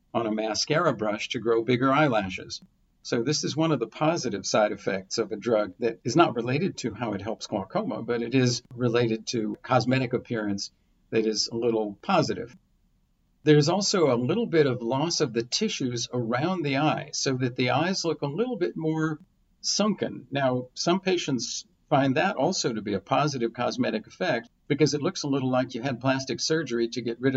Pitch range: 115-145 Hz